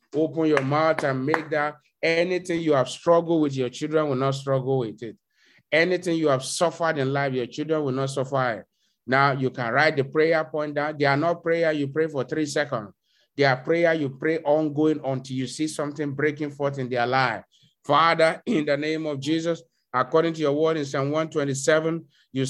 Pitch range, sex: 140-165 Hz, male